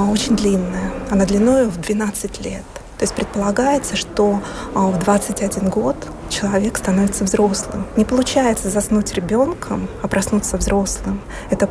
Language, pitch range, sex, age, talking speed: Russian, 195-215 Hz, female, 20-39, 130 wpm